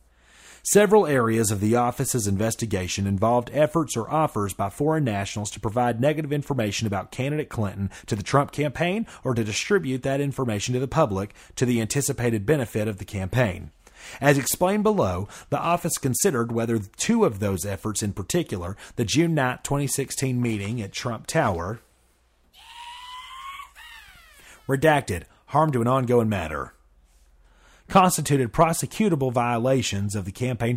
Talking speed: 140 wpm